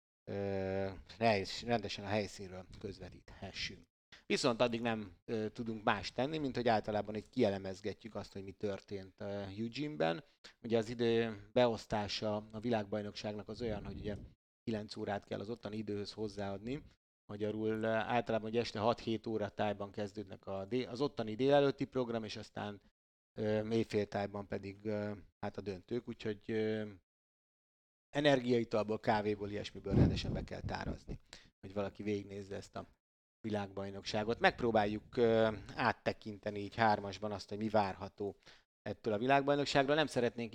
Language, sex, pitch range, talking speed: Hungarian, male, 100-115 Hz, 135 wpm